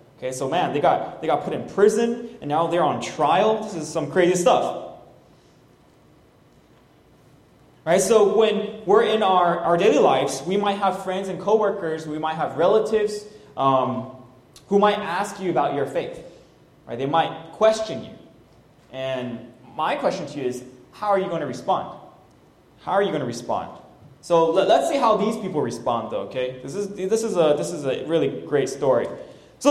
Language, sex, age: English, male, 20-39